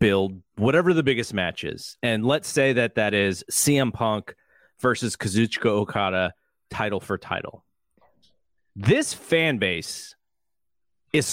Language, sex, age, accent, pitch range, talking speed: English, male, 30-49, American, 100-140 Hz, 125 wpm